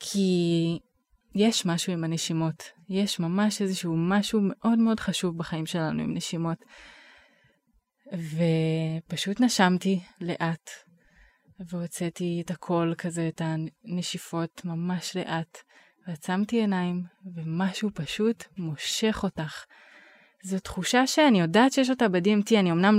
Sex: female